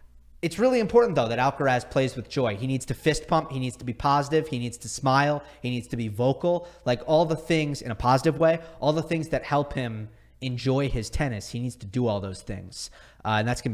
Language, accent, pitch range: English, American, 110-160 Hz